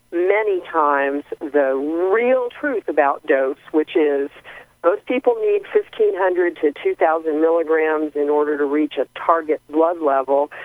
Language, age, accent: English, 50-69, American